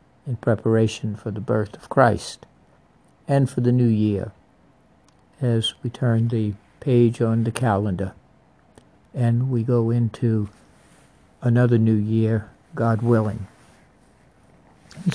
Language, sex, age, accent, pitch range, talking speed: English, male, 60-79, American, 110-130 Hz, 120 wpm